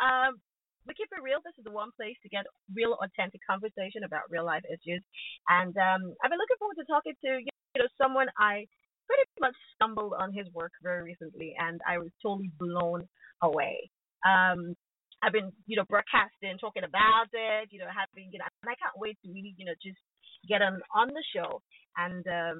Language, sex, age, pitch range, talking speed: English, female, 30-49, 185-265 Hz, 195 wpm